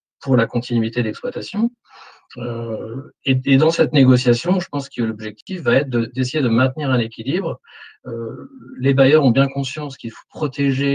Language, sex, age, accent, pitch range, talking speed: French, male, 50-69, French, 120-140 Hz, 170 wpm